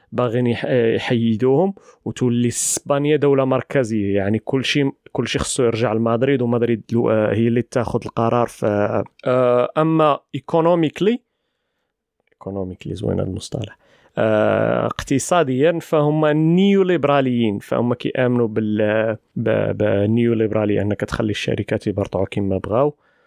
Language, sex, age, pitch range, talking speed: Arabic, male, 30-49, 110-145 Hz, 95 wpm